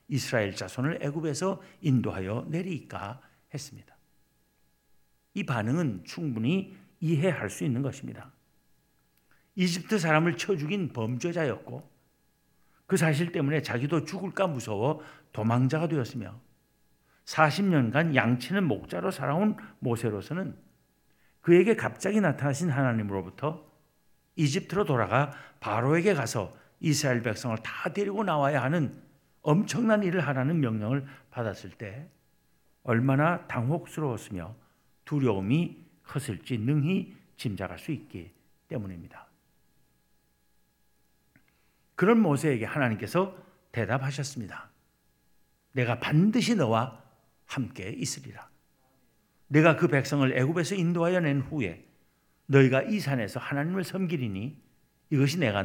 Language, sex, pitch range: Korean, male, 110-165 Hz